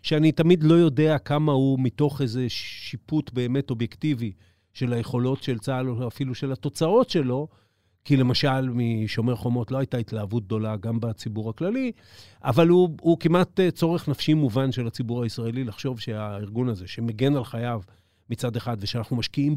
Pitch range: 115-145 Hz